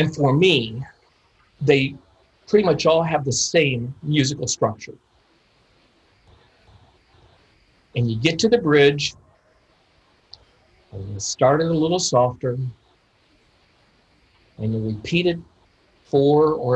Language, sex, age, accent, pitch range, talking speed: English, male, 50-69, American, 120-155 Hz, 110 wpm